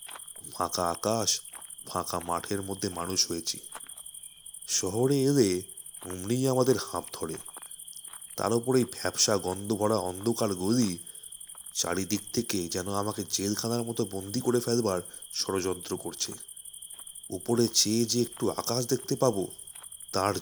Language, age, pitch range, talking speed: Bengali, 30-49, 95-125 Hz, 95 wpm